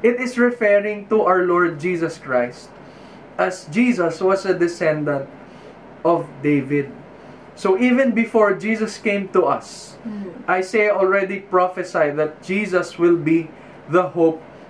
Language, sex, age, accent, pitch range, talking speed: English, male, 20-39, Filipino, 170-215 Hz, 130 wpm